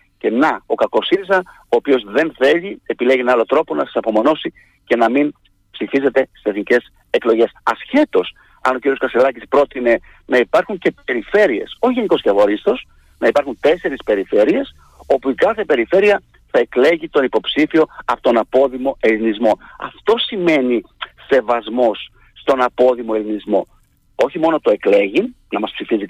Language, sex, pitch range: Greek, male, 130-220 Hz